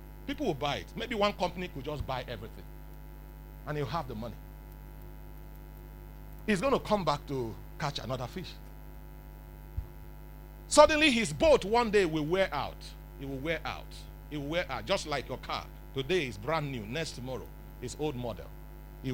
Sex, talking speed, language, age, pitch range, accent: male, 170 wpm, English, 40-59, 140-210 Hz, Nigerian